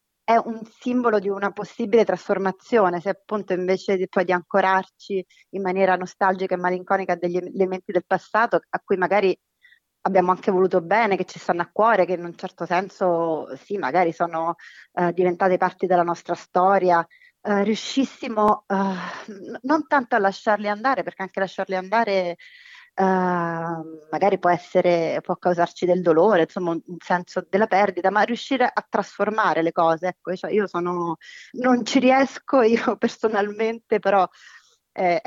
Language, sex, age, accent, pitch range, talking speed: Italian, female, 30-49, native, 175-210 Hz, 155 wpm